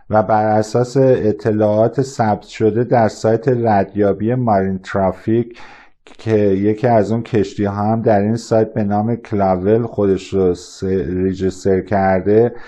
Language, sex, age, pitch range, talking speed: Persian, male, 50-69, 100-120 Hz, 135 wpm